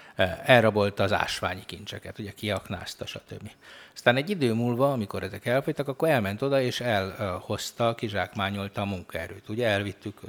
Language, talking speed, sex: Hungarian, 140 wpm, male